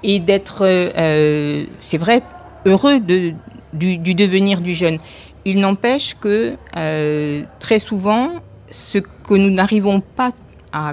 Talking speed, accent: 125 wpm, French